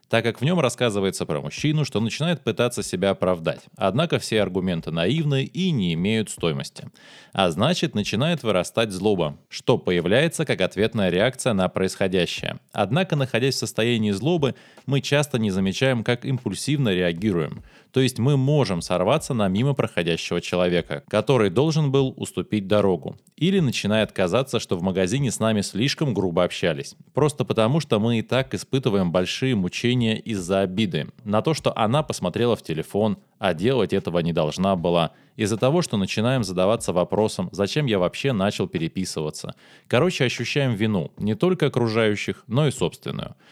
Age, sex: 20-39, male